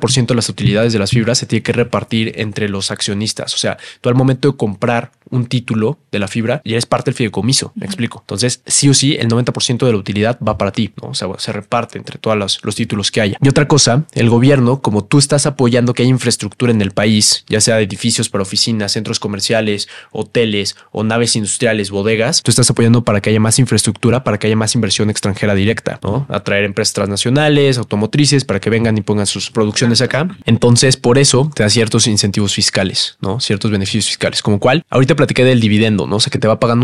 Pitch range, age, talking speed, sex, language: 105-125 Hz, 20-39, 230 wpm, male, Spanish